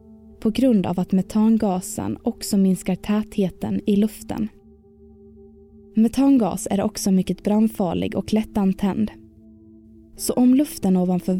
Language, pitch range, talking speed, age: Swedish, 185-220 Hz, 110 wpm, 20-39